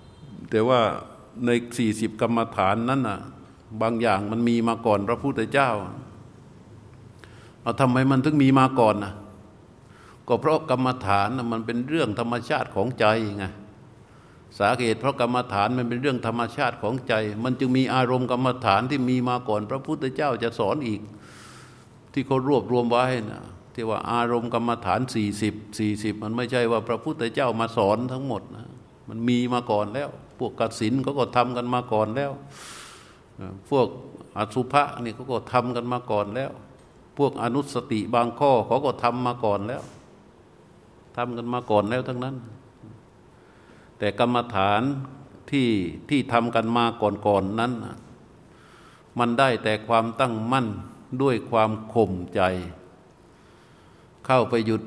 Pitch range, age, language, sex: 110-125 Hz, 60-79, Thai, male